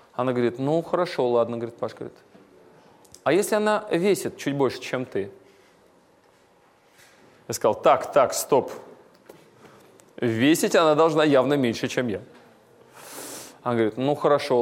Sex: male